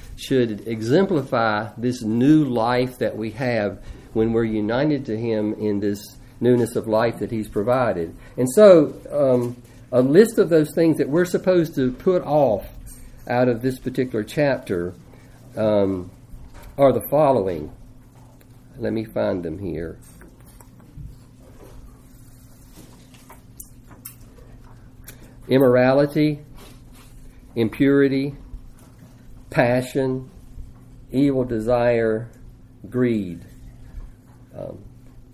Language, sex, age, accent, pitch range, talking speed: English, male, 50-69, American, 120-135 Hz, 95 wpm